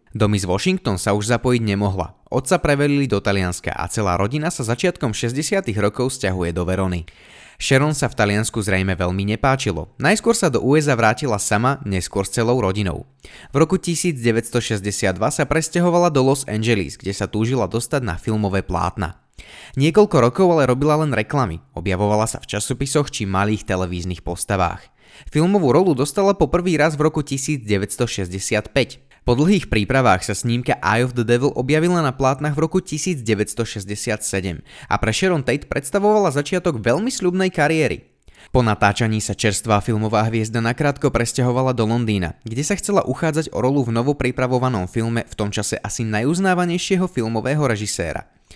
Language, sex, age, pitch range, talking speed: Slovak, male, 20-39, 105-145 Hz, 155 wpm